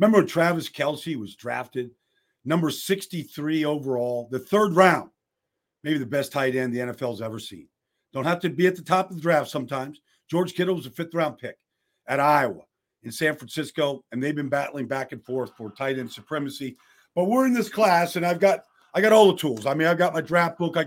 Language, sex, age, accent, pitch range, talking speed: English, male, 50-69, American, 135-195 Hz, 215 wpm